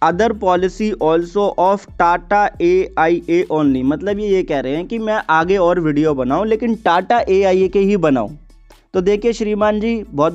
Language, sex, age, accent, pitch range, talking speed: Hindi, male, 20-39, native, 155-195 Hz, 195 wpm